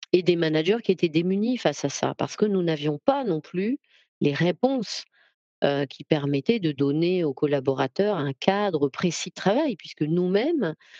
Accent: French